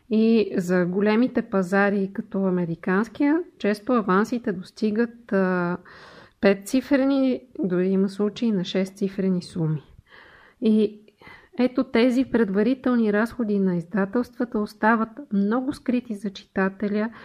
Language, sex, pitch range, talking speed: Bulgarian, female, 190-235 Hz, 95 wpm